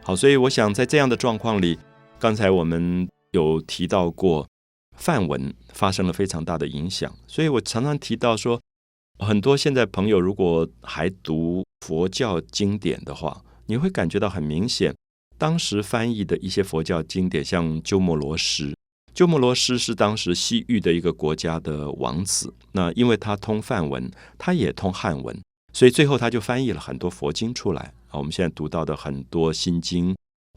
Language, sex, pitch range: Chinese, male, 80-115 Hz